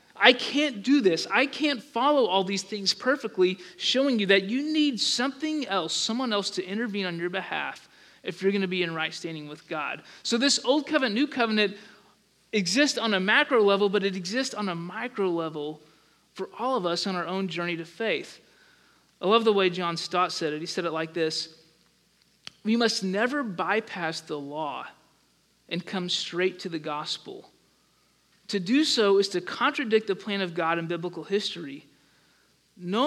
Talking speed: 185 wpm